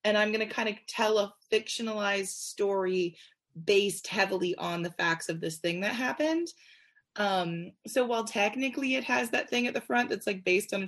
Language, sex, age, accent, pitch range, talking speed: English, female, 20-39, American, 170-220 Hz, 195 wpm